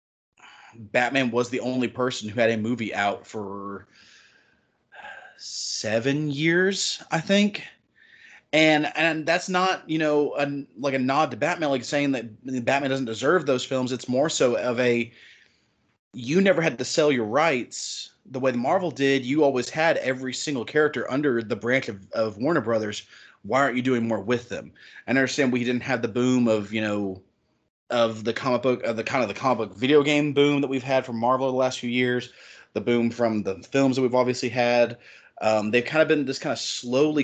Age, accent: 30-49, American